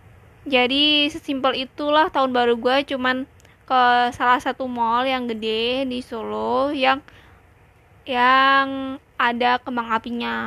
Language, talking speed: Indonesian, 115 wpm